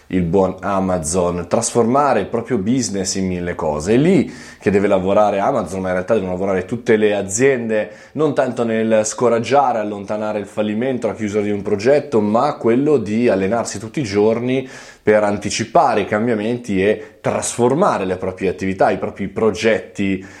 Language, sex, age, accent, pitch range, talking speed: Italian, male, 20-39, native, 95-125 Hz, 160 wpm